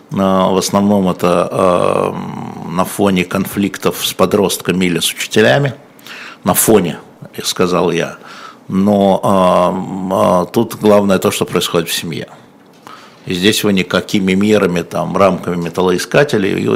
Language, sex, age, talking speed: Russian, male, 60-79, 120 wpm